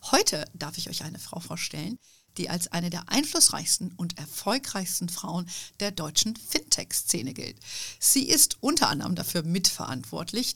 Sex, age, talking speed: female, 50-69, 140 wpm